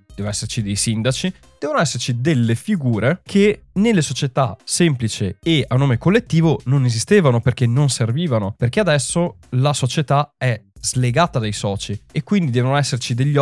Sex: male